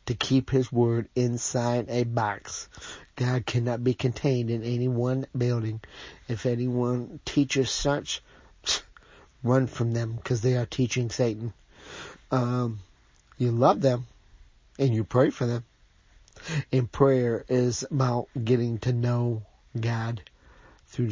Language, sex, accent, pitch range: English, male, American, 115-130 Hz